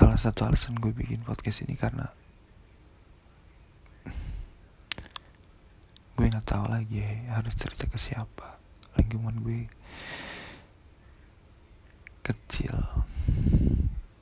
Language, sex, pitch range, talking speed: Indonesian, male, 85-110 Hz, 80 wpm